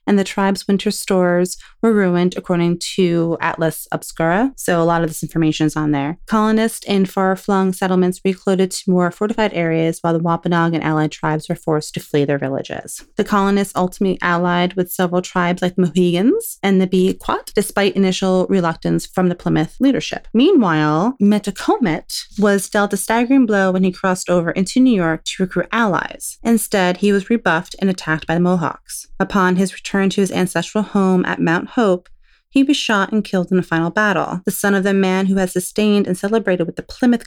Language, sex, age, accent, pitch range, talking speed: English, female, 30-49, American, 175-205 Hz, 190 wpm